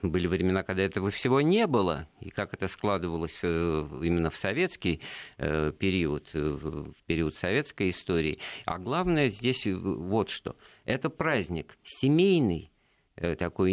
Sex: male